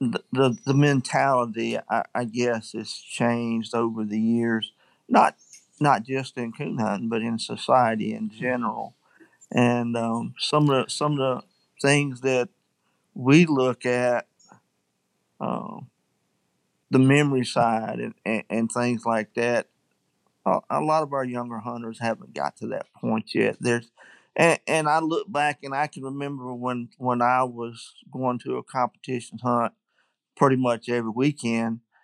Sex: male